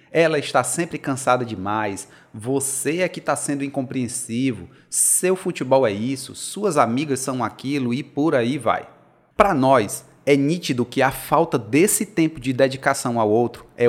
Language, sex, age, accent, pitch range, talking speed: Portuguese, male, 30-49, Brazilian, 115-150 Hz, 160 wpm